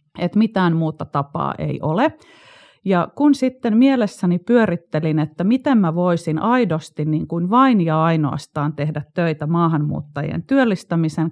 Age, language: 30-49, Finnish